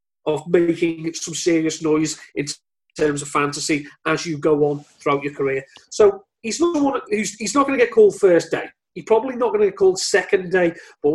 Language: English